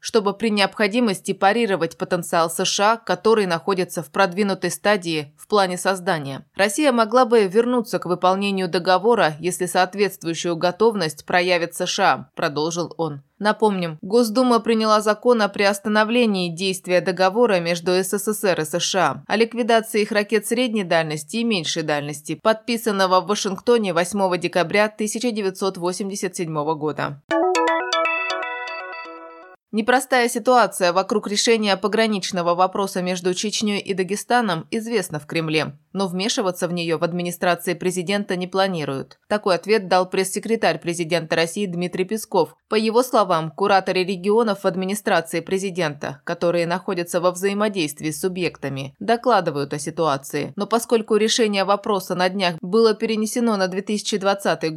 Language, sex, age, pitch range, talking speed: Russian, female, 20-39, 175-215 Hz, 125 wpm